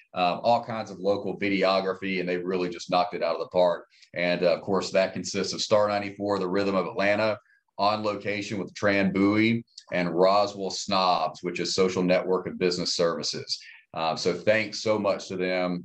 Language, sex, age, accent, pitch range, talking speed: English, male, 40-59, American, 90-115 Hz, 195 wpm